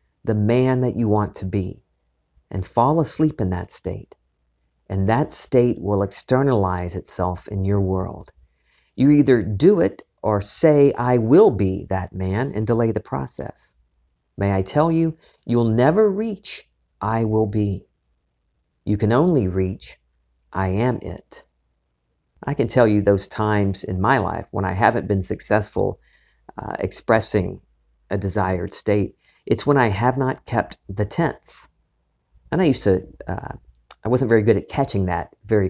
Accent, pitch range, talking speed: American, 95-115 Hz, 160 wpm